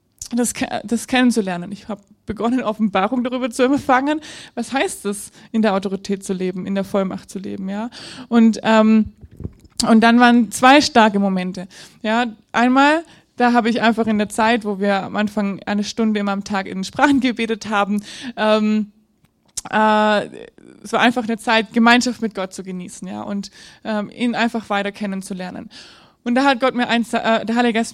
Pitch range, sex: 210-245 Hz, female